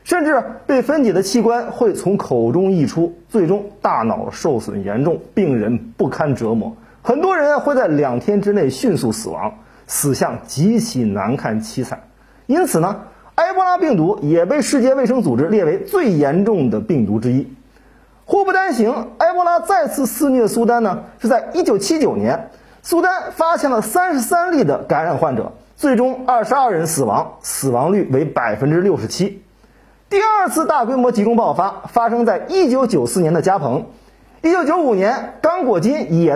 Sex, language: male, Chinese